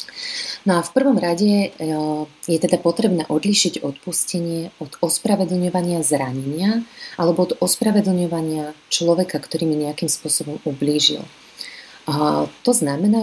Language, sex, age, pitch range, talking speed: Slovak, female, 30-49, 160-200 Hz, 110 wpm